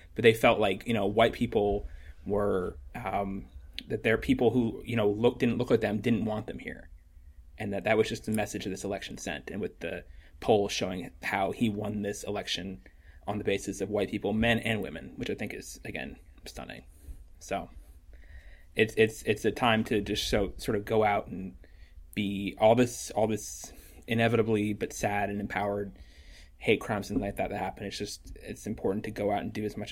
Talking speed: 210 wpm